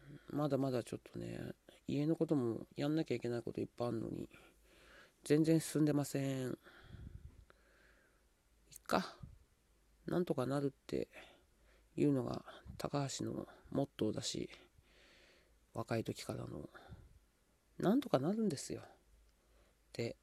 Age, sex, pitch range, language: 40-59, male, 115-145 Hz, Japanese